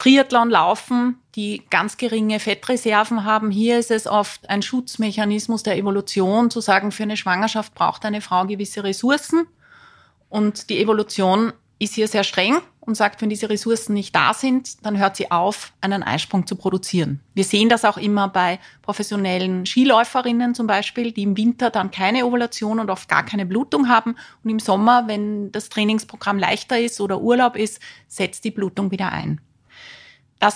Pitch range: 195-230 Hz